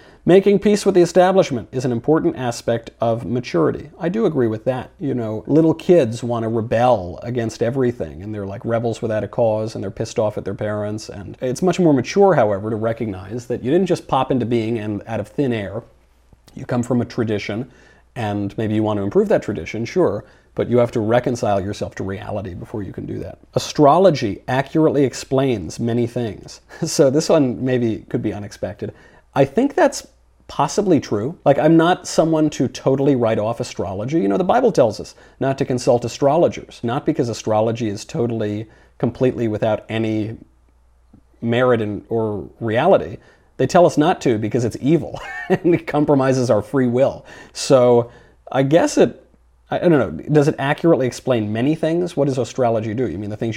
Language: English